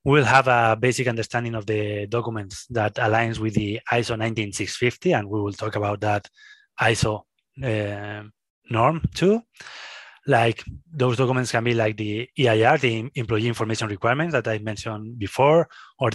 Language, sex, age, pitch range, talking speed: English, male, 20-39, 110-130 Hz, 150 wpm